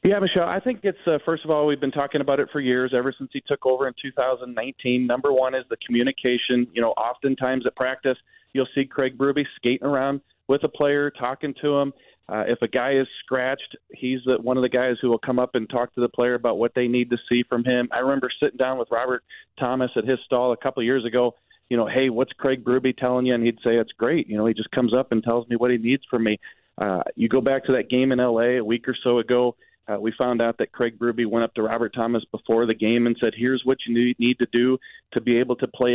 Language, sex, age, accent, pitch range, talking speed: English, male, 30-49, American, 120-140 Hz, 260 wpm